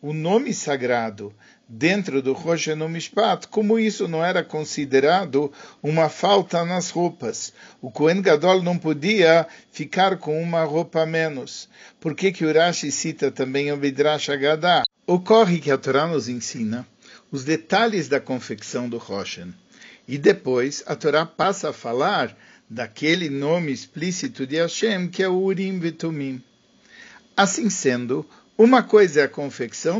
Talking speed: 140 wpm